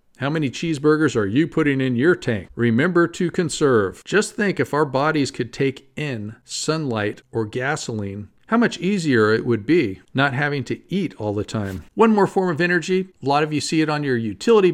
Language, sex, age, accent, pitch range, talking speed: English, male, 50-69, American, 115-155 Hz, 205 wpm